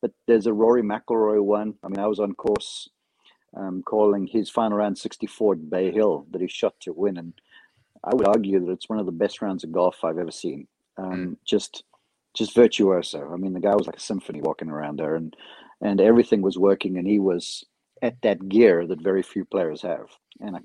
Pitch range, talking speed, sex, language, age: 90-105 Hz, 220 wpm, male, English, 50-69